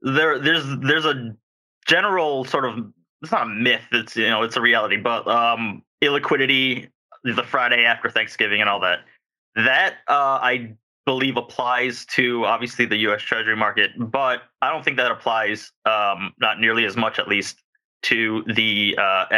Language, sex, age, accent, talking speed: English, male, 20-39, American, 165 wpm